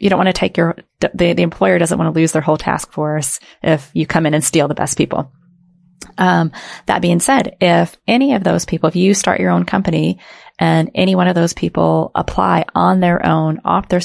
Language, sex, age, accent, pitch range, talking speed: English, female, 30-49, American, 150-175 Hz, 225 wpm